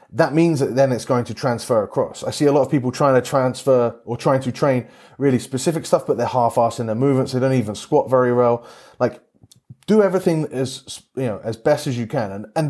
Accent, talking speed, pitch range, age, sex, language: British, 240 wpm, 115-135 Hz, 30-49, male, English